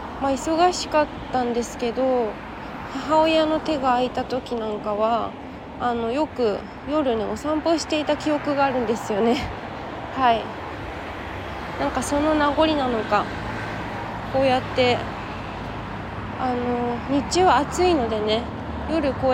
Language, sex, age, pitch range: Japanese, female, 20-39, 230-295 Hz